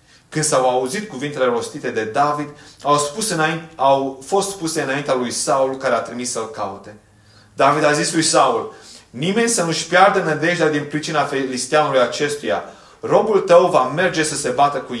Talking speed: 170 wpm